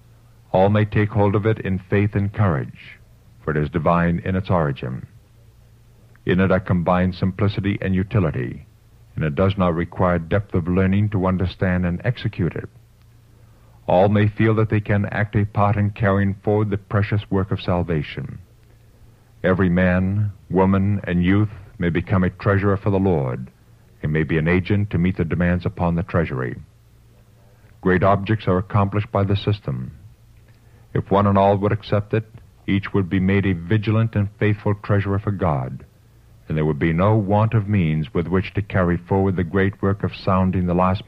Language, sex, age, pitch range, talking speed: English, male, 50-69, 90-110 Hz, 180 wpm